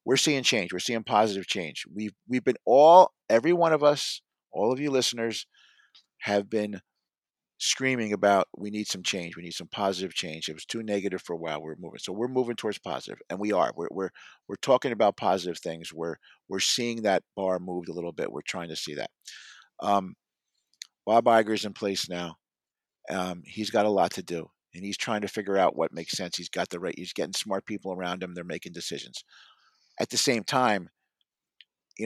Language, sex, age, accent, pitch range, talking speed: English, male, 50-69, American, 95-115 Hz, 210 wpm